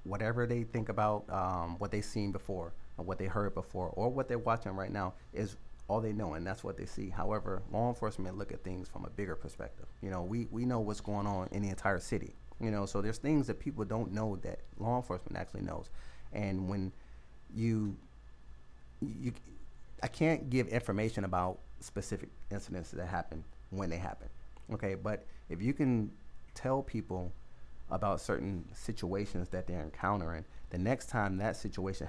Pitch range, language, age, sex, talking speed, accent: 90-110 Hz, English, 30-49, male, 185 wpm, American